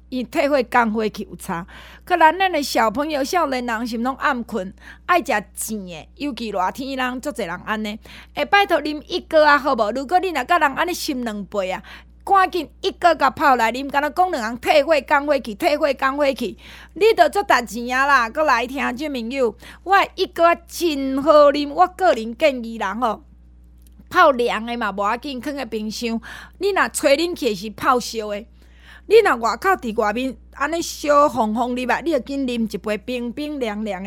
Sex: female